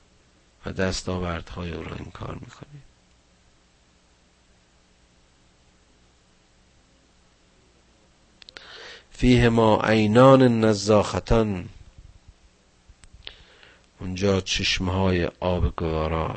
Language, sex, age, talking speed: Persian, male, 50-69, 50 wpm